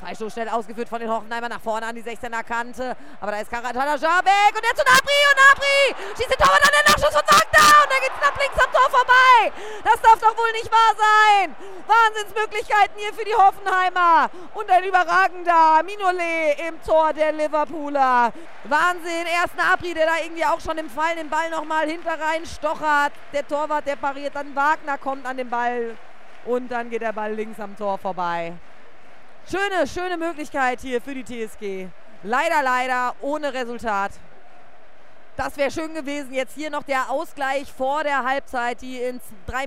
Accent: German